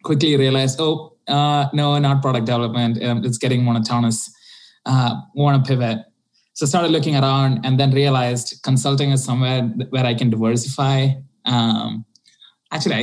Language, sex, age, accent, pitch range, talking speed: English, male, 20-39, Indian, 120-155 Hz, 155 wpm